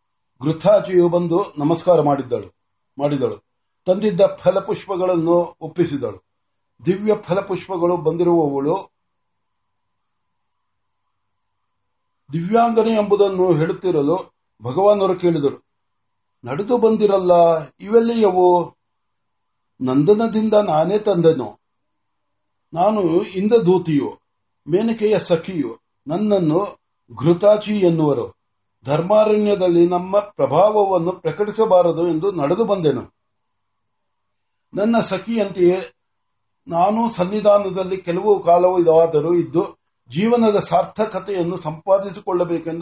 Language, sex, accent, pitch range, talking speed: Marathi, male, native, 145-200 Hz, 35 wpm